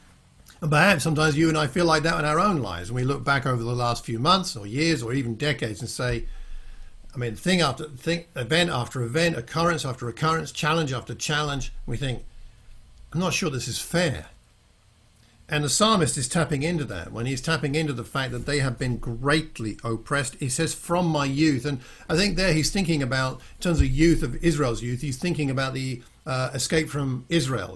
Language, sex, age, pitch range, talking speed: English, male, 50-69, 125-155 Hz, 210 wpm